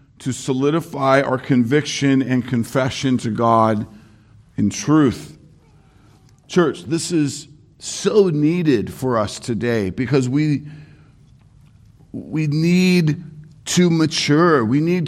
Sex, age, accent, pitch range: male, 50-69, American, 115-150 Hz